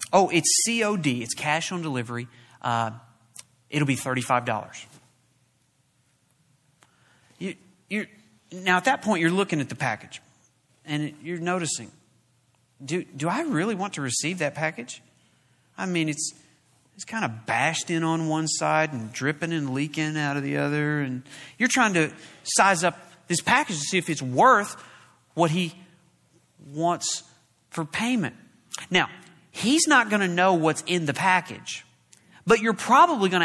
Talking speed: 145 wpm